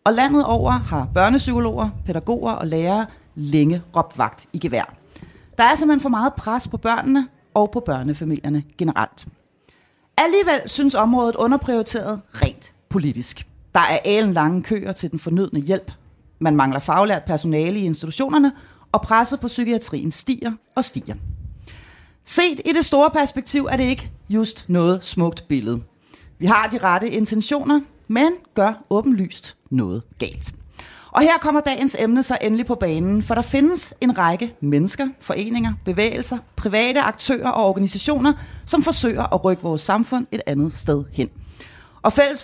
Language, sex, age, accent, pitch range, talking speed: Danish, female, 30-49, native, 170-270 Hz, 155 wpm